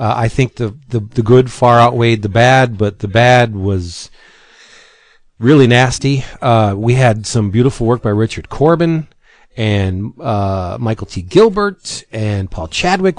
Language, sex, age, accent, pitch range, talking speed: English, male, 40-59, American, 110-140 Hz, 155 wpm